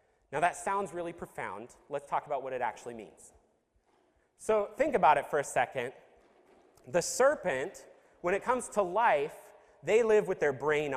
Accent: American